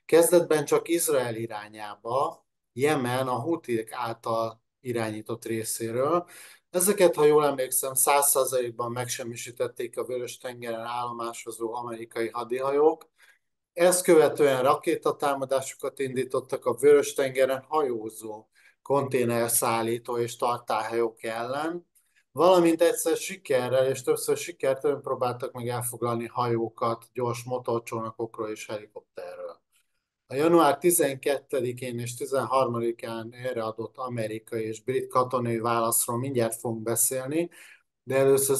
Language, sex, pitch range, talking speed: Hungarian, male, 115-155 Hz, 100 wpm